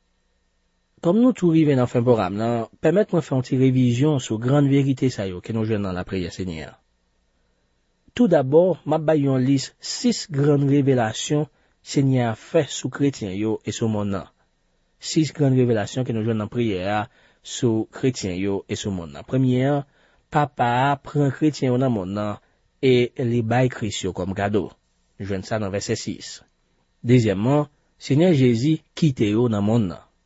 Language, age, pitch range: French, 40-59, 95-135 Hz